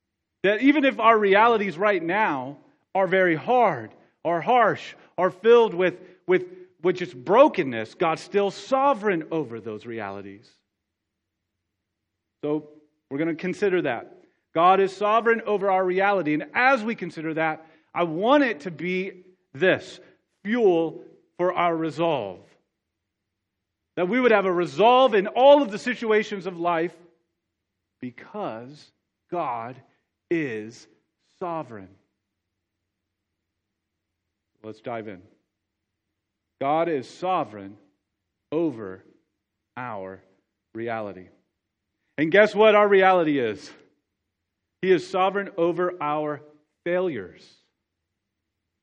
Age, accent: 40-59, American